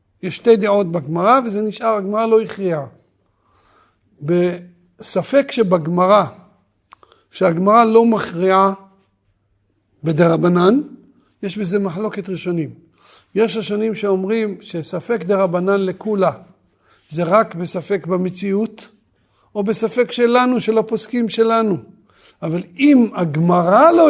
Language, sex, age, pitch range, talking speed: Hebrew, male, 50-69, 180-235 Hz, 95 wpm